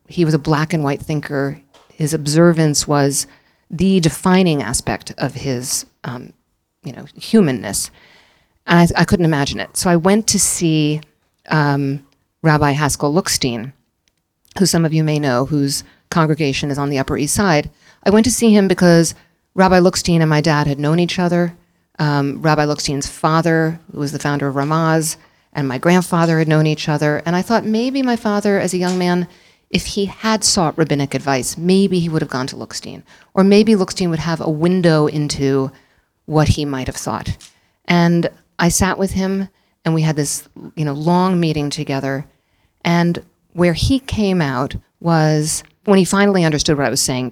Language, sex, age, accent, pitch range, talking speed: English, female, 40-59, American, 140-175 Hz, 185 wpm